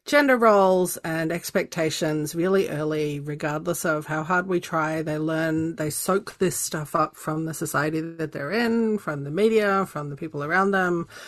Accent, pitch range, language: Australian, 150-175 Hz, English